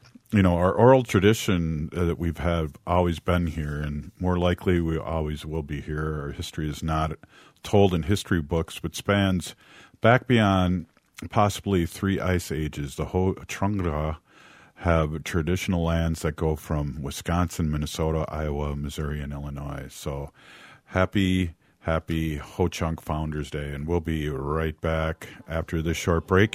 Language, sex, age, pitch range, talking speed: English, male, 50-69, 75-105 Hz, 150 wpm